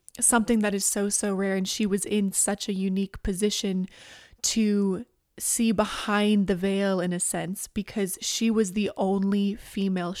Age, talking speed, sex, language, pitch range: 20-39, 165 wpm, female, English, 190-215 Hz